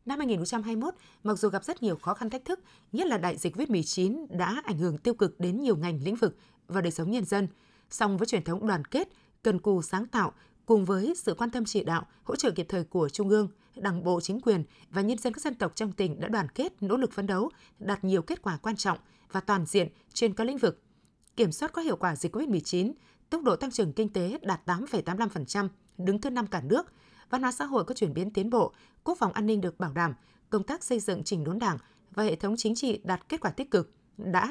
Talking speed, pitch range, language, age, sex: 250 wpm, 185-235 Hz, Vietnamese, 20-39, female